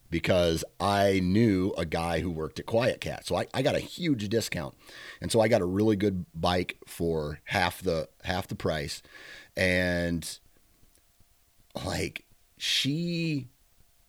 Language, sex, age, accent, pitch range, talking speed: English, male, 30-49, American, 85-100 Hz, 145 wpm